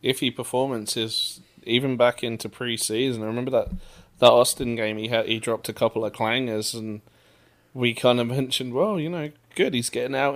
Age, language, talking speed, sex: 20-39, English, 180 wpm, male